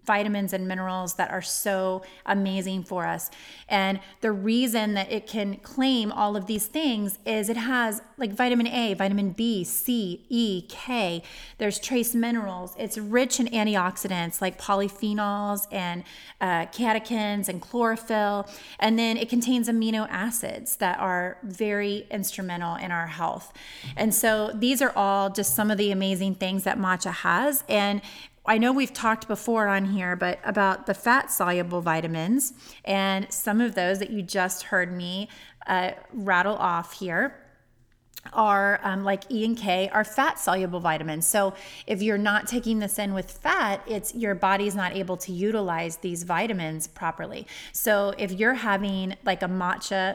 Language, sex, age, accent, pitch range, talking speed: English, female, 30-49, American, 185-220 Hz, 160 wpm